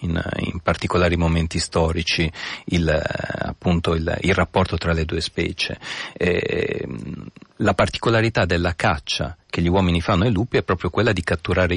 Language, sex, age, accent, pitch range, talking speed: Italian, male, 40-59, native, 85-95 Hz, 140 wpm